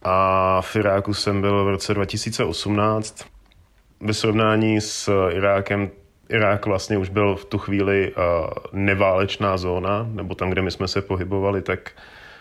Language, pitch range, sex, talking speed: Czech, 95-105 Hz, male, 140 wpm